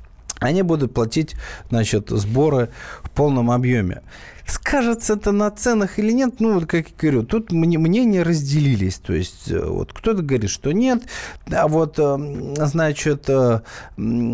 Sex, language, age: male, Russian, 20-39